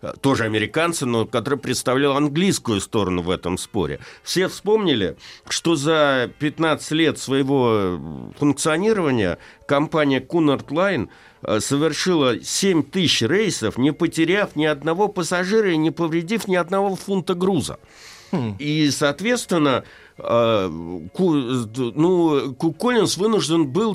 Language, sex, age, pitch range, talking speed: Russian, male, 60-79, 120-165 Hz, 110 wpm